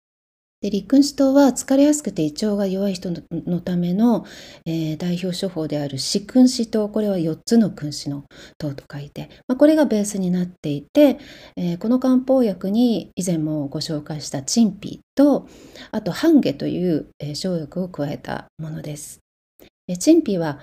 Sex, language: female, Japanese